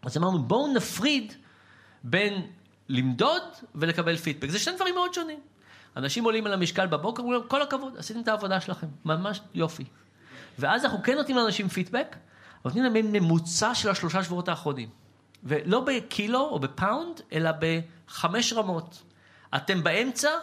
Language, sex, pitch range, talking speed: Hebrew, male, 155-230 Hz, 140 wpm